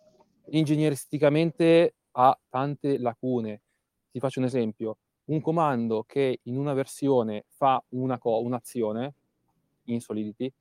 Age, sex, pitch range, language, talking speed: 20-39, male, 120-150 Hz, Italian, 115 wpm